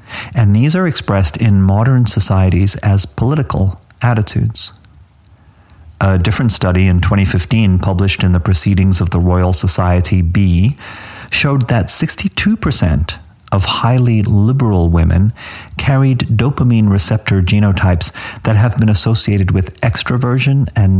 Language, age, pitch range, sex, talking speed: English, 40-59, 90-115 Hz, male, 120 wpm